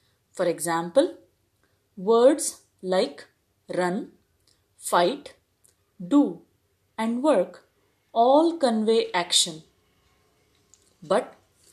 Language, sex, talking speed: English, female, 65 wpm